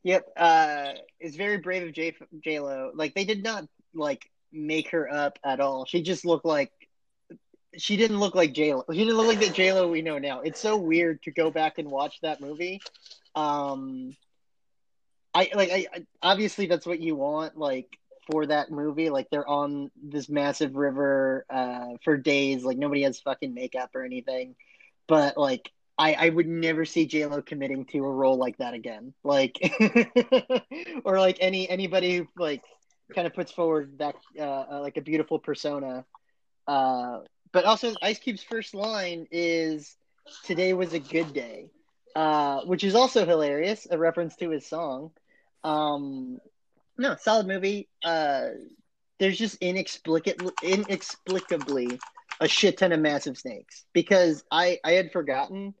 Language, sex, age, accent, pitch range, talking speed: English, male, 30-49, American, 145-190 Hz, 160 wpm